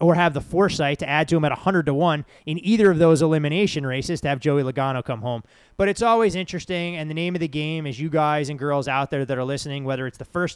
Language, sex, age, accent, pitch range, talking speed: English, male, 20-39, American, 140-170 Hz, 275 wpm